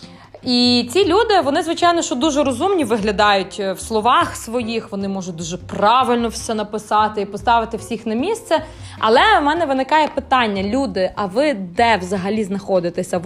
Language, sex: Ukrainian, female